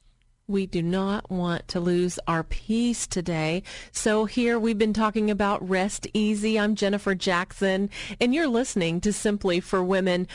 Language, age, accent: English, 40-59, American